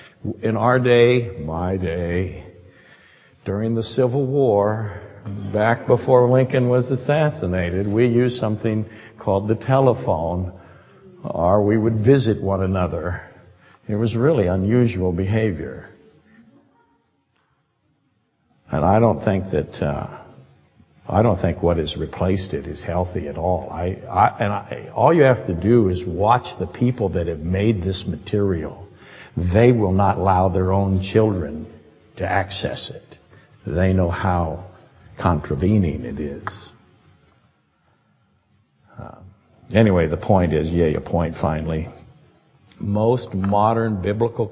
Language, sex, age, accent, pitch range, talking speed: English, male, 60-79, American, 90-110 Hz, 125 wpm